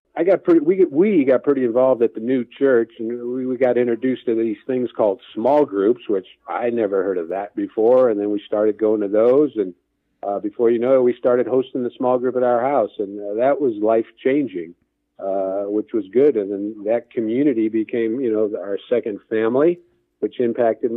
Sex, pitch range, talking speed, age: male, 110-145 Hz, 210 wpm, 50-69